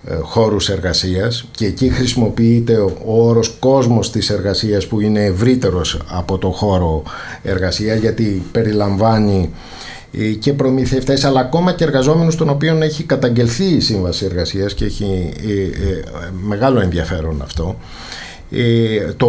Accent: native